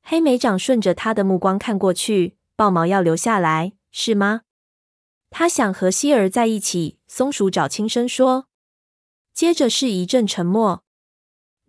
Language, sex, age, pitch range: Chinese, female, 20-39, 180-235 Hz